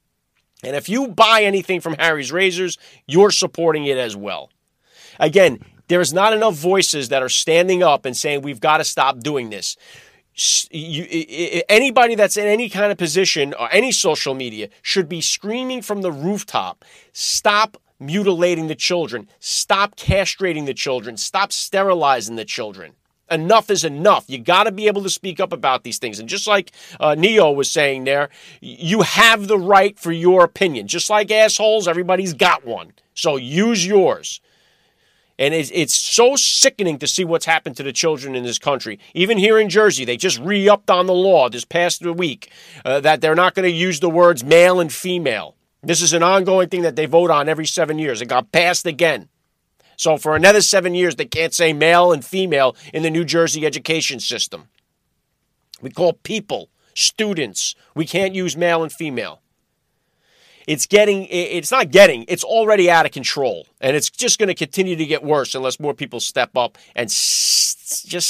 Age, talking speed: 30-49, 180 wpm